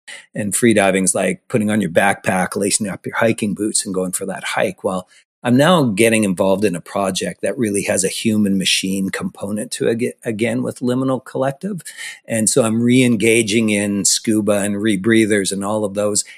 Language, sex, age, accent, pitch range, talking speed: English, male, 50-69, American, 100-120 Hz, 190 wpm